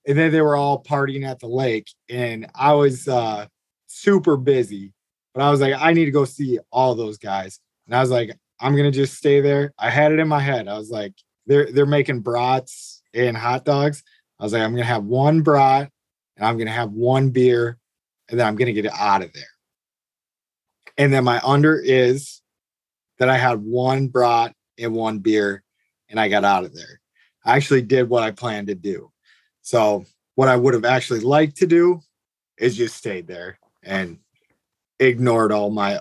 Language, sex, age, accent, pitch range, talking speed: English, male, 20-39, American, 110-140 Hz, 205 wpm